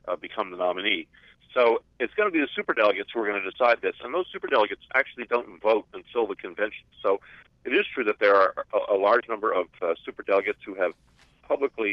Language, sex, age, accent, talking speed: English, male, 50-69, American, 215 wpm